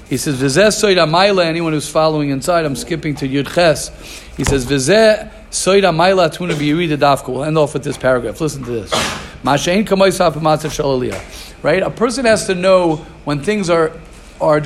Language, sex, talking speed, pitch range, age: English, male, 140 wpm, 150-185 Hz, 50-69